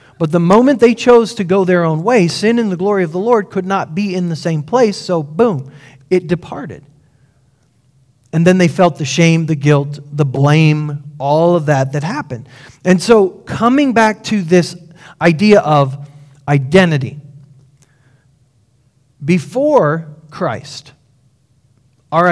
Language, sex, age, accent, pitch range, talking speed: English, male, 40-59, American, 135-175 Hz, 150 wpm